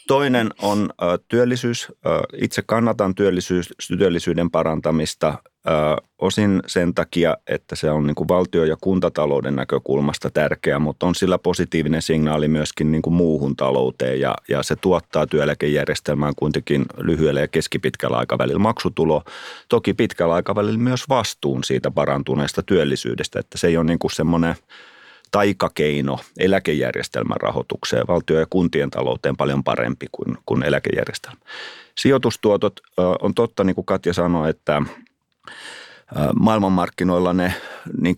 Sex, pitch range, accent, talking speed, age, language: male, 75-95 Hz, native, 110 wpm, 30-49, Finnish